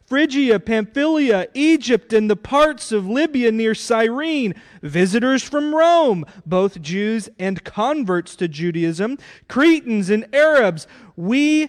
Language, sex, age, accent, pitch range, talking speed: English, male, 30-49, American, 175-255 Hz, 120 wpm